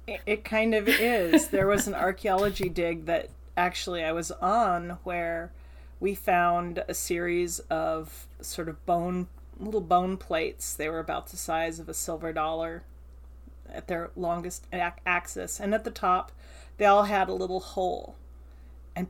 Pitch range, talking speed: 170-215 Hz, 155 wpm